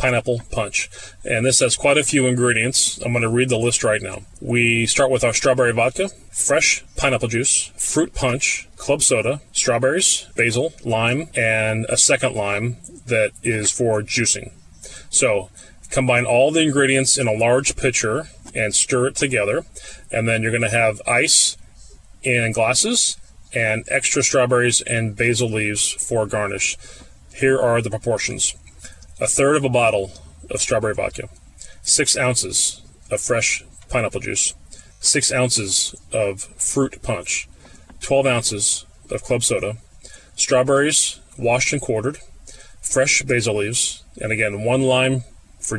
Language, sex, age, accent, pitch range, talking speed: English, male, 30-49, American, 105-130 Hz, 145 wpm